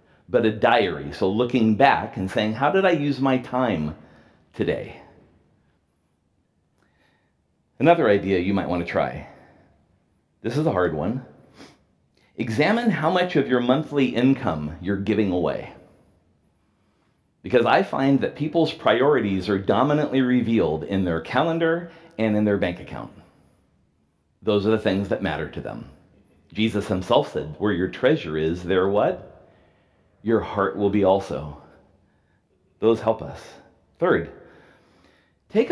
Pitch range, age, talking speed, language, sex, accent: 100-145 Hz, 40-59, 135 wpm, English, male, American